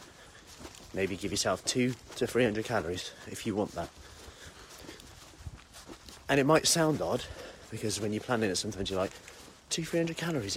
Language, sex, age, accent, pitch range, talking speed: English, male, 30-49, British, 100-135 Hz, 155 wpm